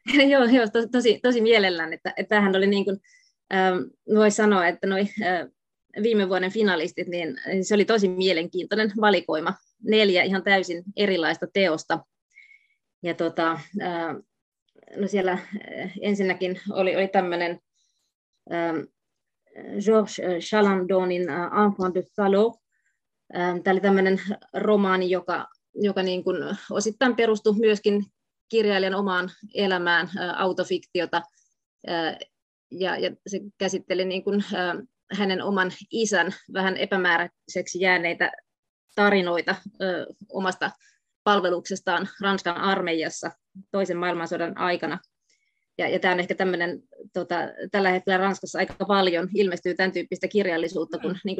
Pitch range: 180-205 Hz